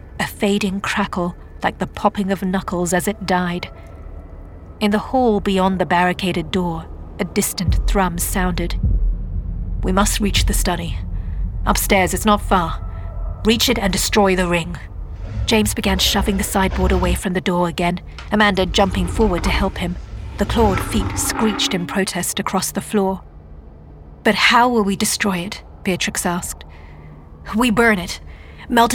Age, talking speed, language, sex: 40-59, 155 wpm, English, female